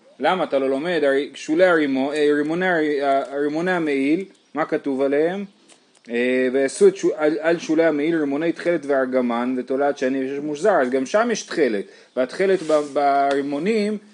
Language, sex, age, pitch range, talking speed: Hebrew, male, 30-49, 135-185 Hz, 130 wpm